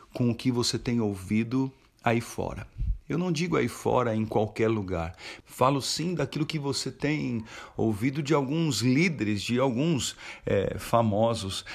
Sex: male